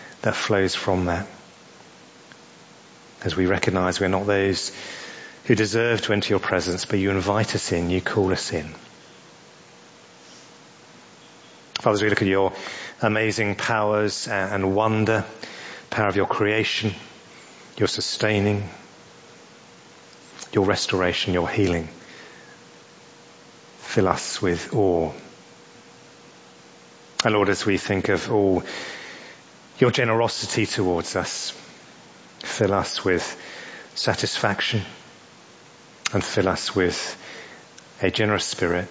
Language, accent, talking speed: English, British, 110 wpm